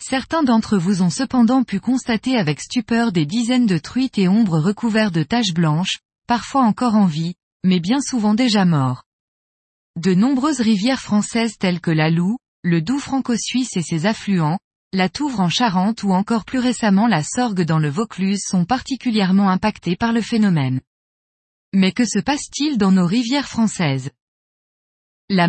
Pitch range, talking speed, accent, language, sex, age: 180-245 Hz, 165 wpm, French, French, female, 20-39